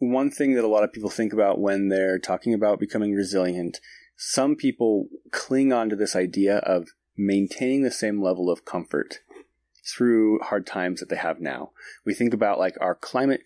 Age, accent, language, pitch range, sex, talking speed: 30-49, American, English, 90-125 Hz, male, 185 wpm